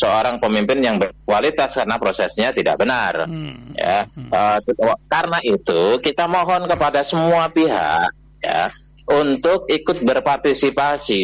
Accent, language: native, Indonesian